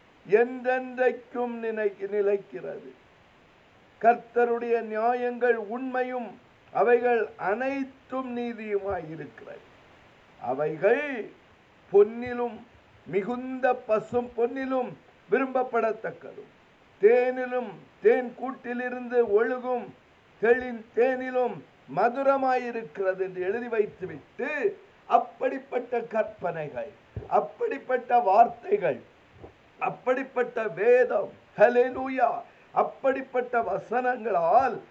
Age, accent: 50-69, native